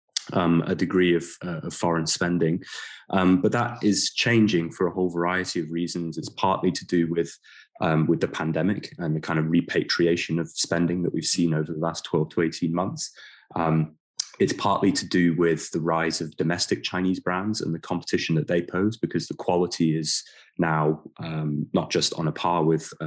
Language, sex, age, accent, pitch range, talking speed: English, male, 20-39, British, 80-90 Hz, 195 wpm